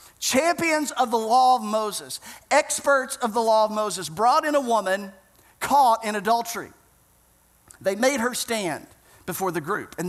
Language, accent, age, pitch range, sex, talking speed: English, American, 40-59, 200-255 Hz, male, 160 wpm